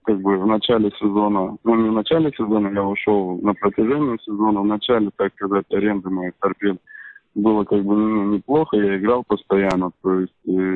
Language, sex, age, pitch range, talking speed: Russian, male, 20-39, 95-105 Hz, 175 wpm